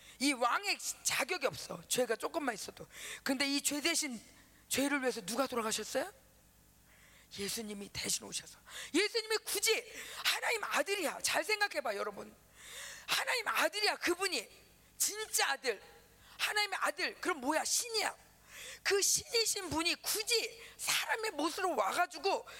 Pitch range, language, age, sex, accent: 270-380 Hz, Korean, 40-59, female, native